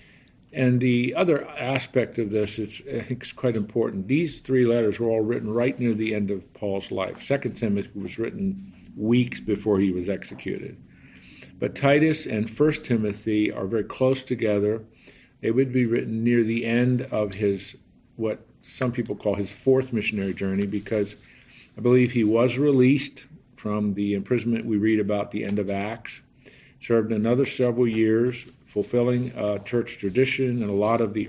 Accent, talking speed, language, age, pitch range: American, 165 wpm, English, 50-69, 105-125 Hz